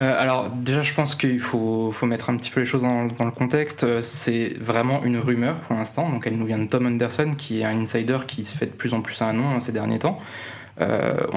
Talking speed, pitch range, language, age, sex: 250 wpm, 115-135 Hz, French, 20-39, male